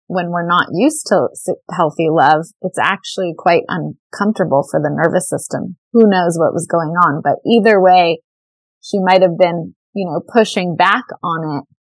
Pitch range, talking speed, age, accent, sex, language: 165-190 Hz, 165 wpm, 20-39, American, female, English